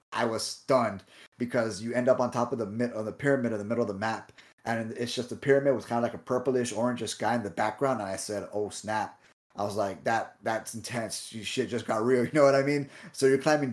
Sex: male